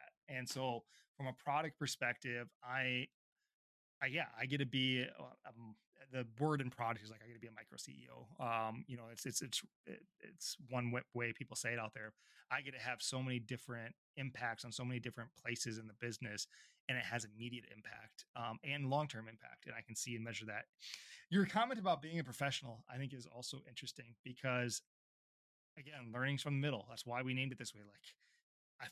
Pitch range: 120-140 Hz